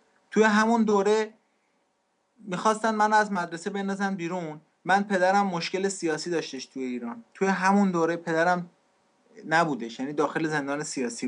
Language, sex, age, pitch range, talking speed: English, male, 30-49, 160-200 Hz, 135 wpm